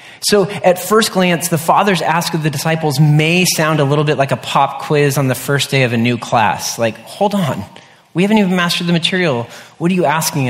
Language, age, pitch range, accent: English, 30-49, 135-175 Hz, American